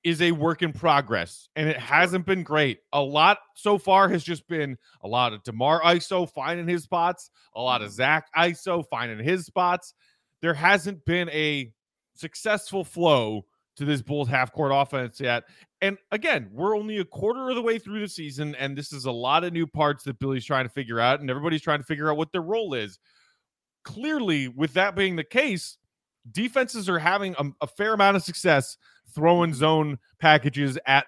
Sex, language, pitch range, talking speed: male, English, 140-185 Hz, 195 wpm